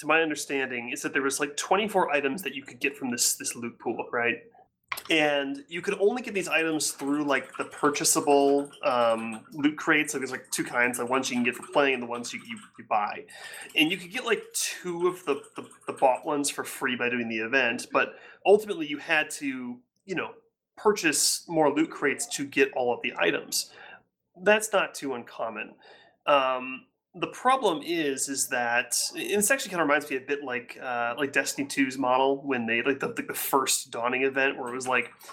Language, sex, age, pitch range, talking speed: English, male, 30-49, 130-190 Hz, 210 wpm